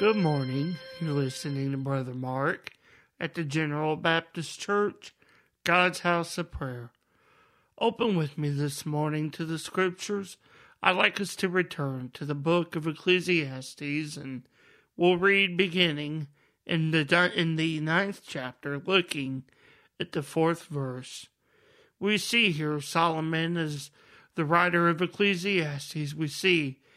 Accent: American